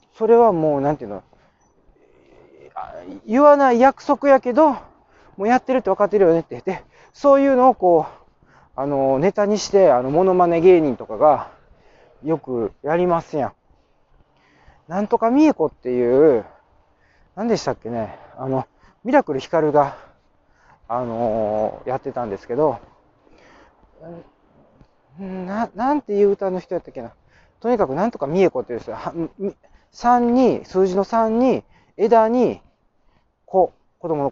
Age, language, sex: 40-59, Japanese, male